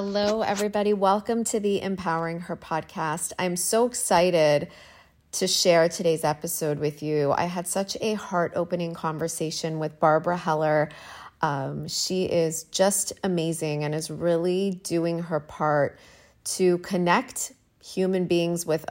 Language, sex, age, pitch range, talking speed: English, female, 30-49, 155-185 Hz, 135 wpm